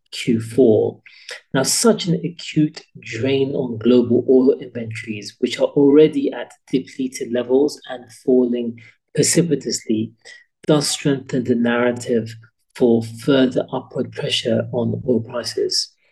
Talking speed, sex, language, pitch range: 110 wpm, male, English, 120-150 Hz